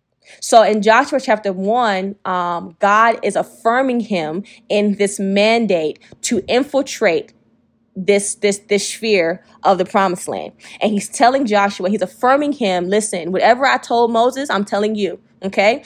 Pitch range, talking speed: 200-230 Hz, 150 wpm